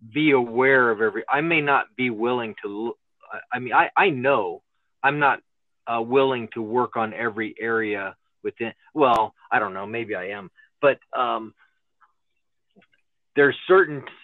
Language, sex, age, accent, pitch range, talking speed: English, male, 40-59, American, 120-155 Hz, 150 wpm